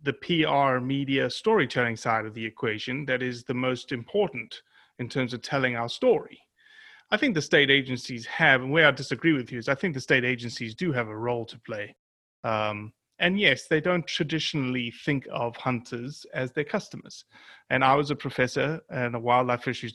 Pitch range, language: 120-150 Hz, English